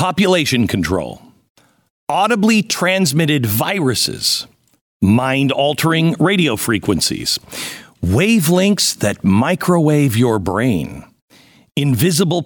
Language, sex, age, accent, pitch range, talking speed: English, male, 50-69, American, 115-185 Hz, 65 wpm